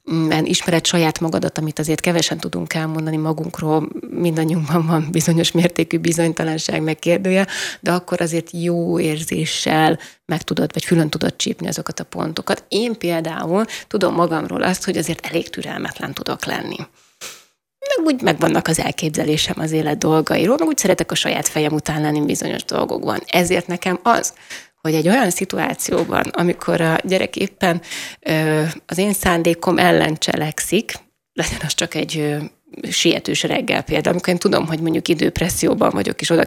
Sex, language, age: female, Hungarian, 30-49